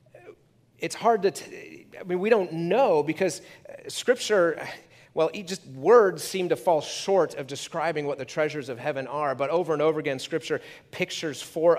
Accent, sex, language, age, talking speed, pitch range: American, male, English, 30-49, 170 wpm, 130-170 Hz